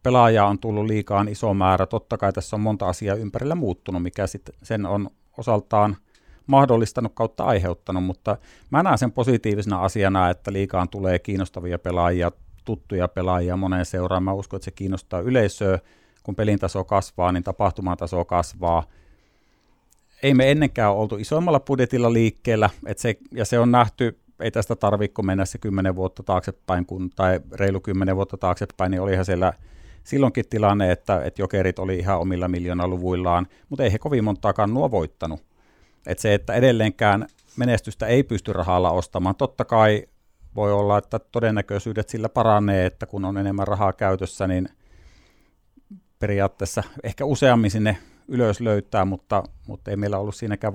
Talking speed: 155 wpm